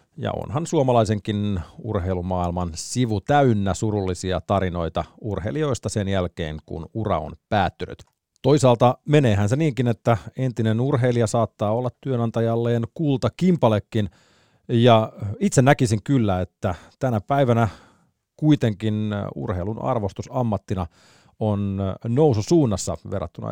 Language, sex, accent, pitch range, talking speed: Finnish, male, native, 95-120 Hz, 105 wpm